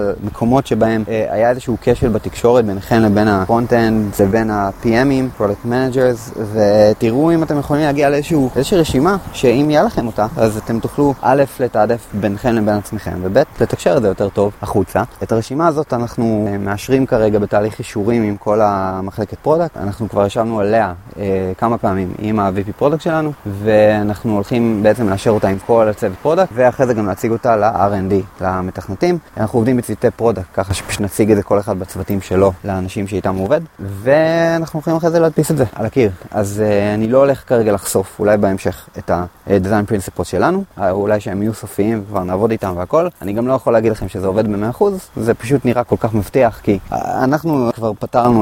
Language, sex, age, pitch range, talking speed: Hebrew, male, 20-39, 100-125 Hz, 165 wpm